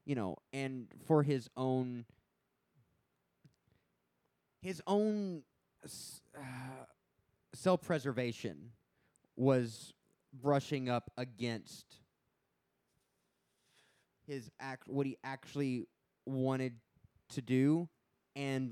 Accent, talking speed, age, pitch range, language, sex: American, 70 wpm, 20-39, 120-145 Hz, English, male